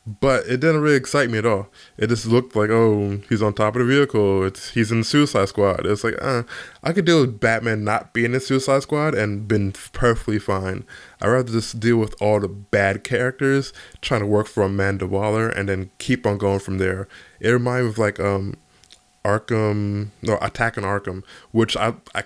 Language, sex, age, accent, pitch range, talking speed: English, male, 20-39, American, 100-120 Hz, 210 wpm